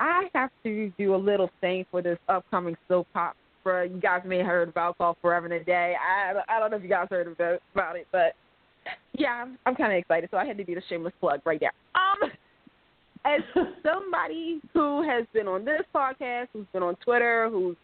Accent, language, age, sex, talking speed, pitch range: American, English, 20-39, female, 215 wpm, 185-245 Hz